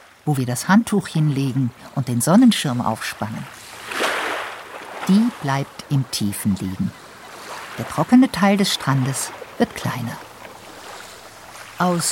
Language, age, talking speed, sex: German, 50-69, 110 wpm, female